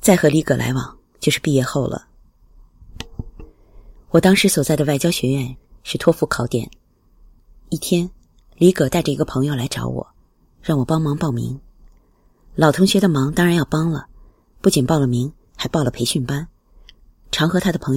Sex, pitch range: female, 125-165 Hz